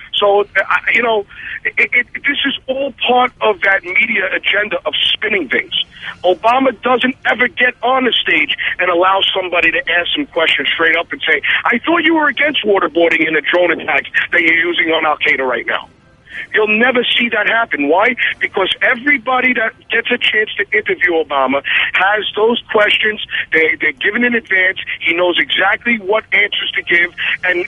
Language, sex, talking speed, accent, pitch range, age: English, male, 180 wpm, American, 185-255 Hz, 50-69